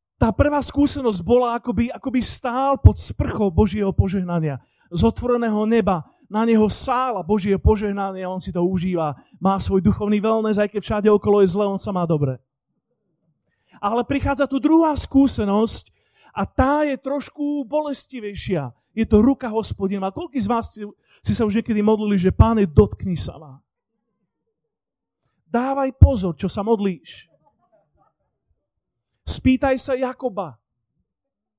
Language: Slovak